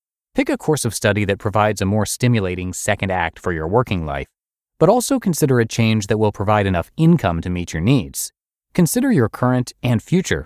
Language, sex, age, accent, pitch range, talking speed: English, male, 30-49, American, 90-120 Hz, 200 wpm